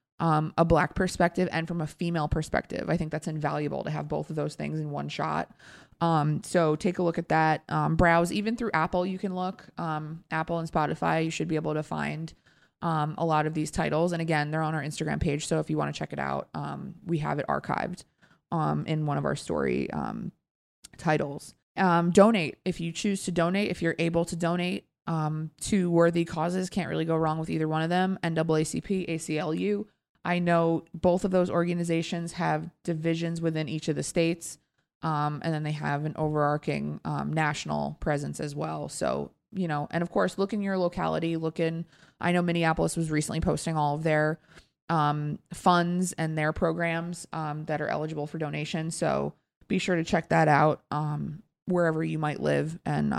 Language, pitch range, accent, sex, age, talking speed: English, 155-175 Hz, American, female, 20-39, 200 wpm